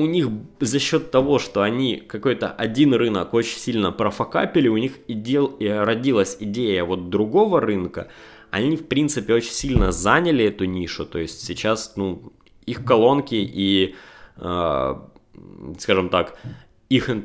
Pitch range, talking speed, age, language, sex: 95-115 Hz, 145 wpm, 20-39, Russian, male